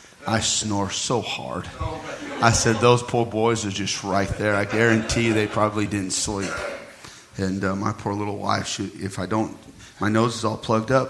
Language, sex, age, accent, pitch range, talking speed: English, male, 40-59, American, 95-110 Hz, 195 wpm